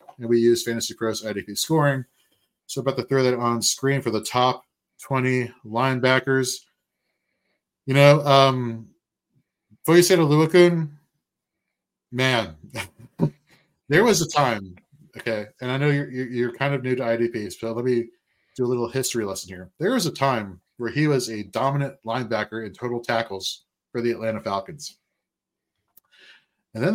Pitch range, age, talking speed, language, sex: 110-135 Hz, 30-49, 160 wpm, English, male